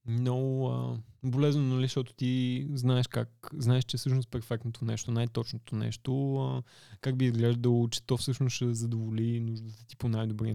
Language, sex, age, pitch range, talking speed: Bulgarian, male, 20-39, 115-130 Hz, 165 wpm